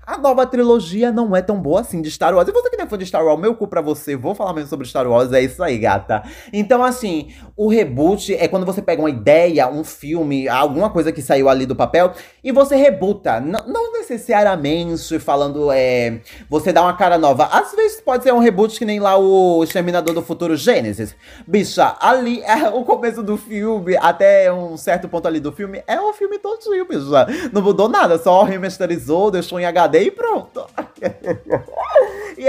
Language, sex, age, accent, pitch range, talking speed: Portuguese, male, 20-39, Brazilian, 160-235 Hz, 200 wpm